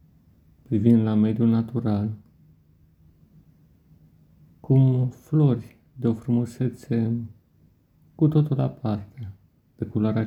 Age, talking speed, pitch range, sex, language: 50-69, 80 wpm, 110-130 Hz, male, Romanian